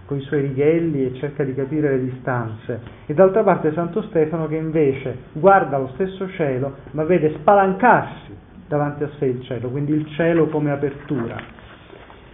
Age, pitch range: 40-59, 130-170 Hz